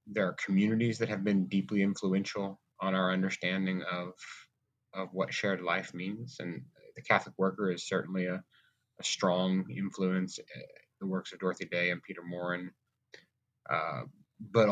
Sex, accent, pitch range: male, American, 90-105 Hz